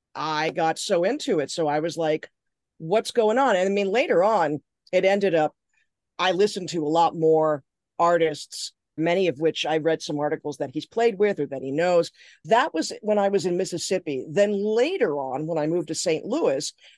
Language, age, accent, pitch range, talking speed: English, 40-59, American, 155-190 Hz, 205 wpm